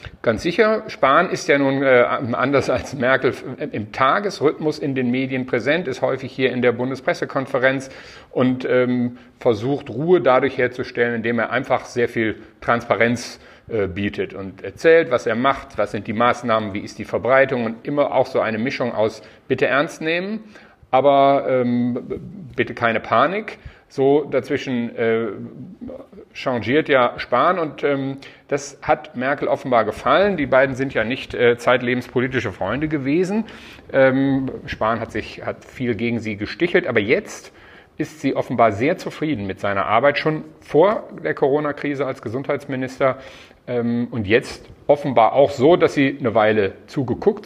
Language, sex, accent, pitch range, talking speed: German, male, German, 120-145 Hz, 155 wpm